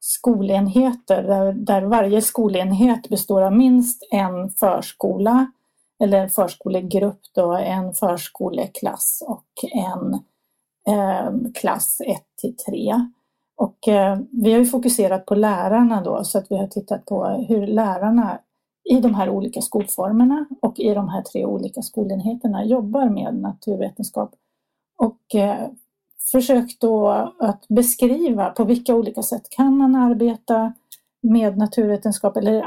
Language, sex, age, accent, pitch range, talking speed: Swedish, female, 30-49, native, 205-245 Hz, 130 wpm